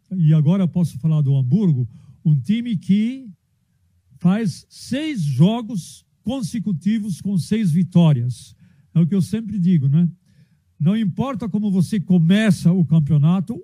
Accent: Brazilian